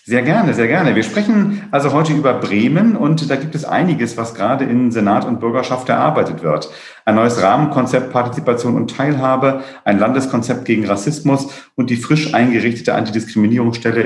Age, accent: 40-59, German